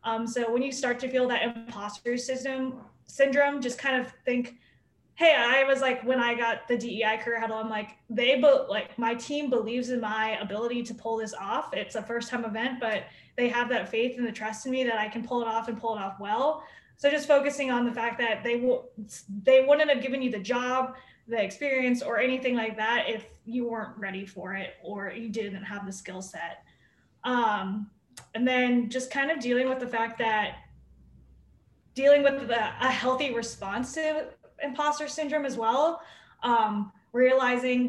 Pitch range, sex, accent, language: 220-260 Hz, female, American, English